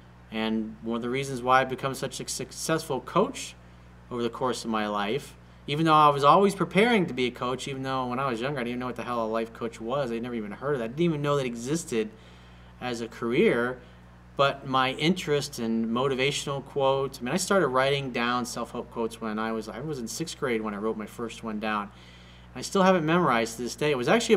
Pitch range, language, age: 105-140 Hz, English, 40-59